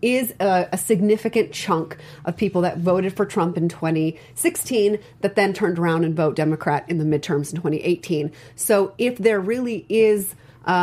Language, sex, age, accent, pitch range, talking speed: English, female, 30-49, American, 170-210 Hz, 165 wpm